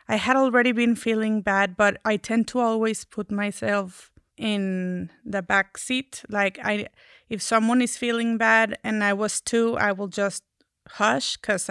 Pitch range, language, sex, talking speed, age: 200-235 Hz, English, female, 170 wpm, 30-49